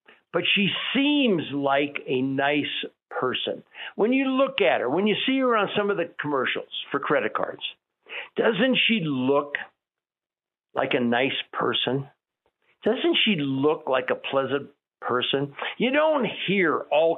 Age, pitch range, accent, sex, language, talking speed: 60-79, 150-215 Hz, American, male, English, 145 wpm